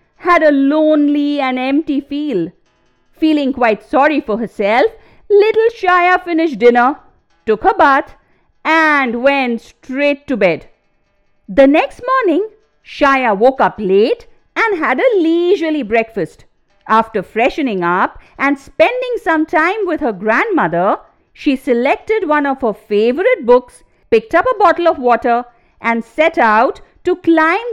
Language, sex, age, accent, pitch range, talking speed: English, female, 50-69, Indian, 245-355 Hz, 135 wpm